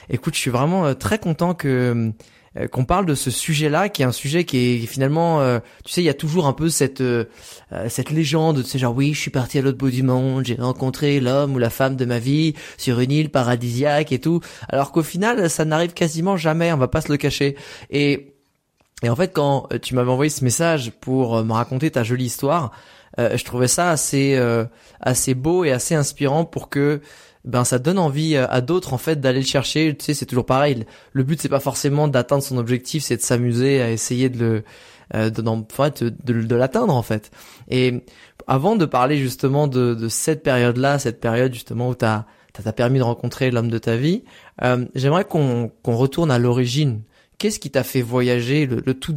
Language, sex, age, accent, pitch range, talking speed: French, male, 20-39, French, 125-150 Hz, 215 wpm